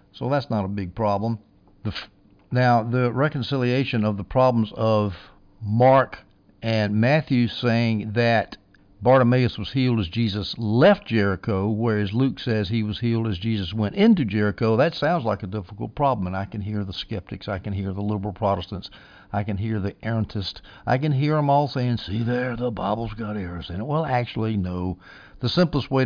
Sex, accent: male, American